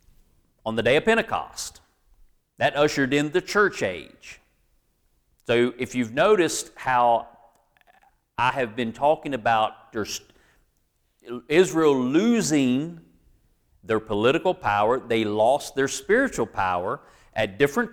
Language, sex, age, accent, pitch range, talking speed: English, male, 40-59, American, 115-155 Hz, 110 wpm